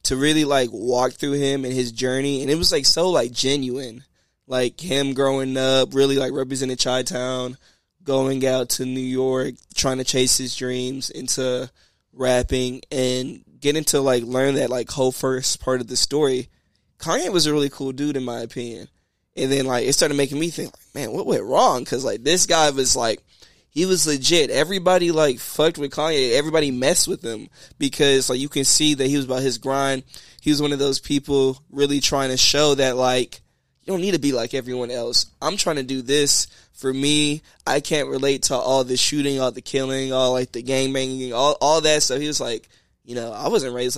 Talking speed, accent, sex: 210 wpm, American, male